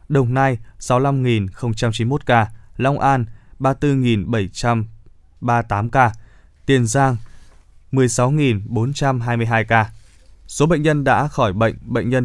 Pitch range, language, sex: 110-130 Hz, Vietnamese, male